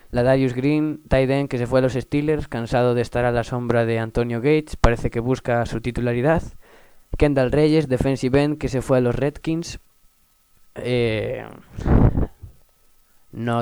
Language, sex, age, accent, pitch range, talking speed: Spanish, male, 20-39, Spanish, 120-140 Hz, 160 wpm